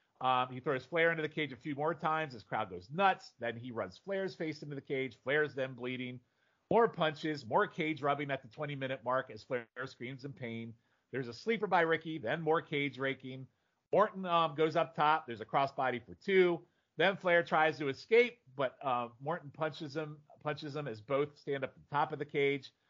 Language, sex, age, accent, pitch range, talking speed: English, male, 40-59, American, 135-175 Hz, 210 wpm